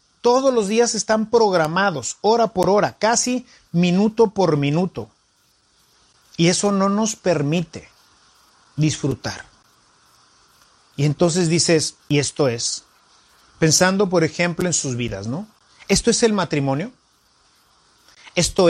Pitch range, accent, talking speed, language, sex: 150-205 Hz, Mexican, 115 wpm, English, male